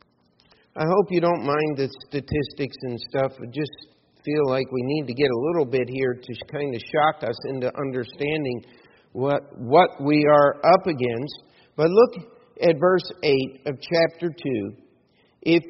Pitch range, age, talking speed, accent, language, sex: 135-170 Hz, 50-69, 165 wpm, American, English, male